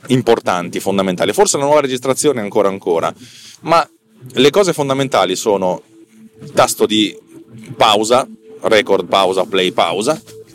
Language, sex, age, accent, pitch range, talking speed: Italian, male, 30-49, native, 95-130 Hz, 130 wpm